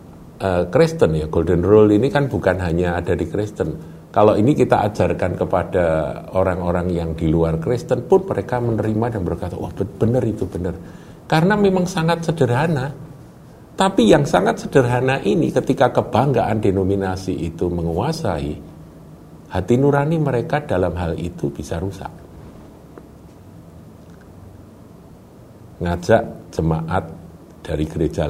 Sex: male